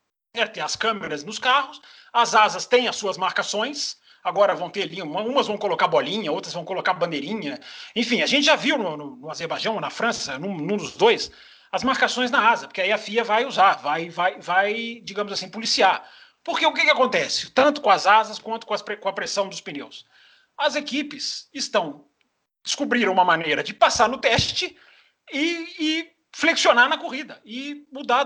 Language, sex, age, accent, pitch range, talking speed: Portuguese, male, 40-59, Brazilian, 190-280 Hz, 180 wpm